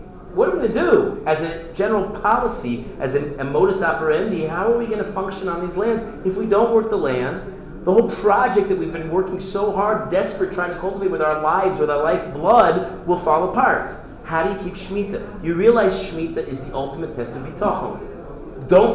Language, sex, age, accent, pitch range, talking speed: English, male, 40-59, American, 135-190 Hz, 210 wpm